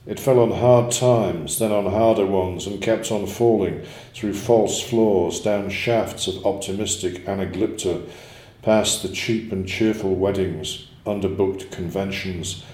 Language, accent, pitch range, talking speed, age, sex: English, British, 95-110 Hz, 135 wpm, 50-69, male